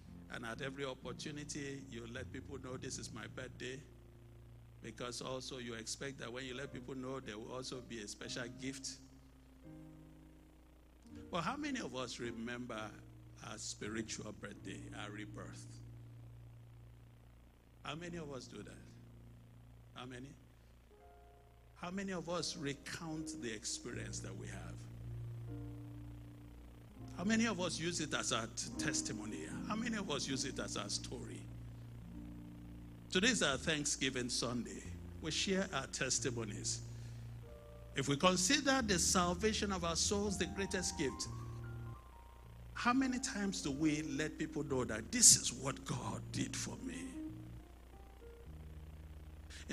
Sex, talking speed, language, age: male, 135 wpm, English, 60-79